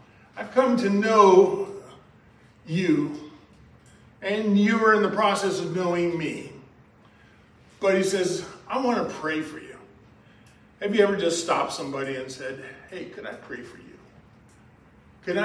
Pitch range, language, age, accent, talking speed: 150-200 Hz, English, 40-59, American, 150 wpm